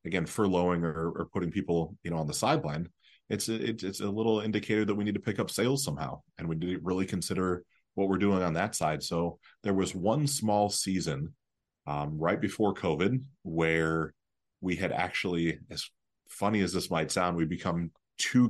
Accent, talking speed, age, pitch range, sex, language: American, 190 wpm, 30-49, 85-100 Hz, male, English